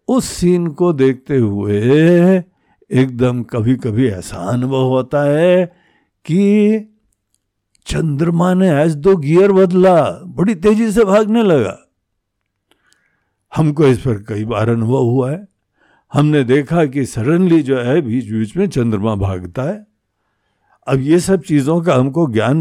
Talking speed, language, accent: 135 wpm, Hindi, native